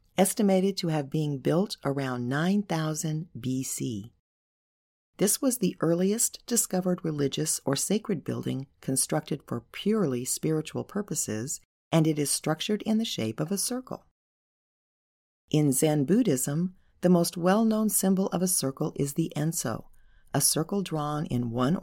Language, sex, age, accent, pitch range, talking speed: English, female, 40-59, American, 130-185 Hz, 135 wpm